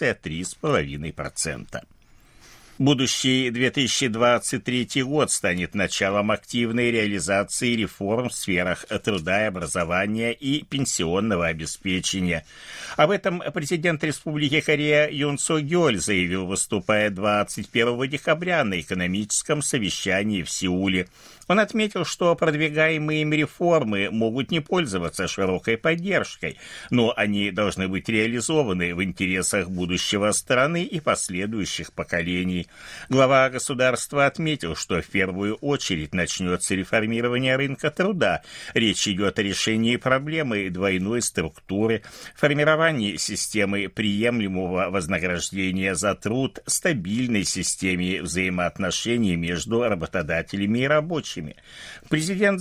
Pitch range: 95-150 Hz